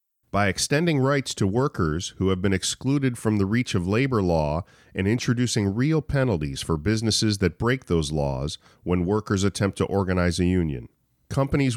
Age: 40-59